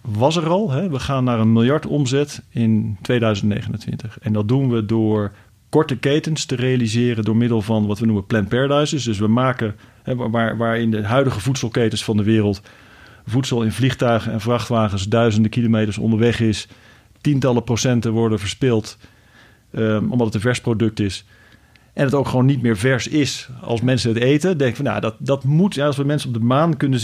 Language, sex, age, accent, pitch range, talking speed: Dutch, male, 40-59, Dutch, 110-130 Hz, 195 wpm